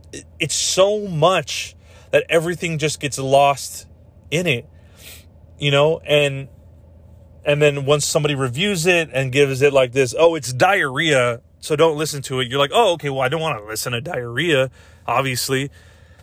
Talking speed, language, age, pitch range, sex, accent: 165 wpm, English, 30-49, 115-150 Hz, male, American